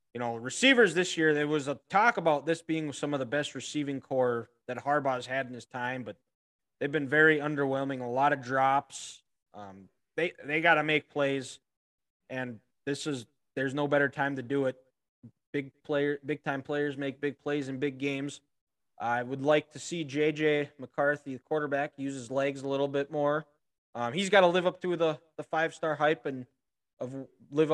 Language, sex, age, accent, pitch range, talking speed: English, male, 20-39, American, 130-155 Hz, 195 wpm